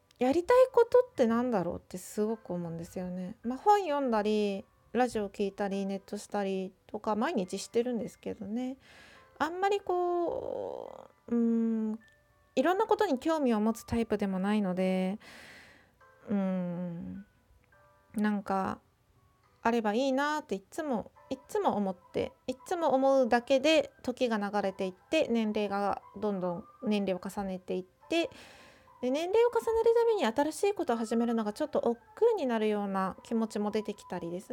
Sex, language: female, Japanese